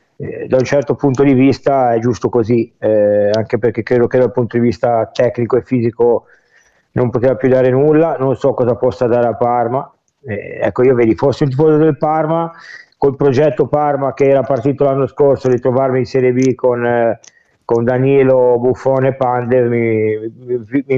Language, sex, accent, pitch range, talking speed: Italian, male, native, 120-140 Hz, 185 wpm